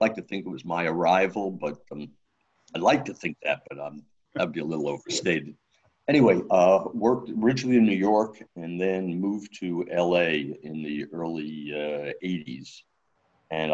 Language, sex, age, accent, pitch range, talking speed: English, male, 60-79, American, 80-95 Hz, 175 wpm